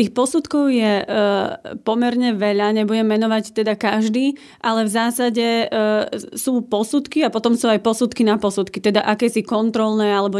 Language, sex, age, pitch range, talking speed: Slovak, female, 30-49, 205-230 Hz, 155 wpm